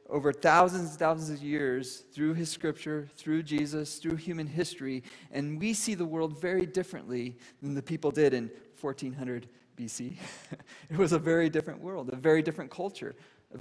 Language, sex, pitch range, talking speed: English, male, 140-175 Hz, 170 wpm